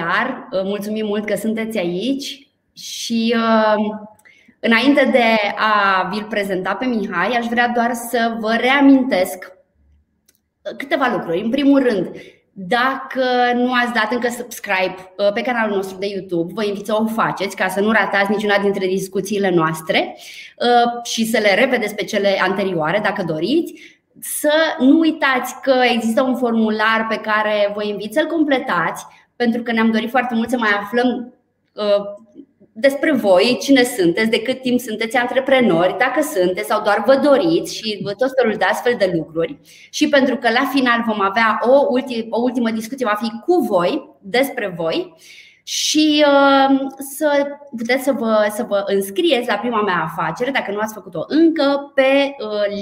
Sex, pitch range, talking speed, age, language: female, 200-260 Hz, 160 wpm, 20-39, Romanian